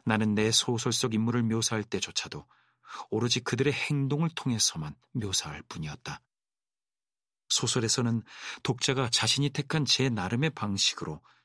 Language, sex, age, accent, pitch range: Korean, male, 40-59, native, 105-130 Hz